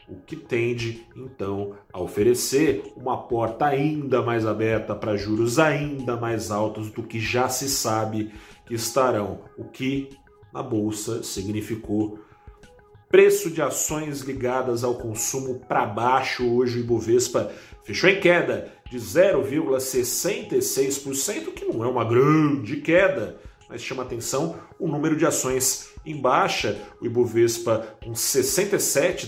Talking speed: 130 wpm